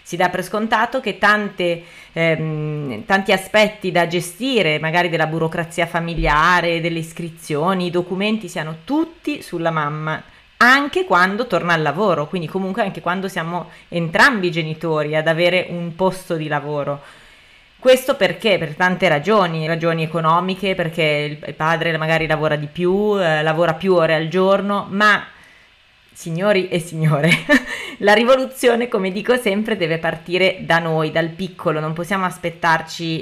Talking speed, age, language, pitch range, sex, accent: 145 wpm, 30-49, Italian, 160-190 Hz, female, native